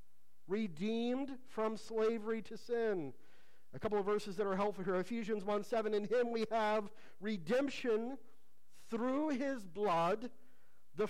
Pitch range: 170-235 Hz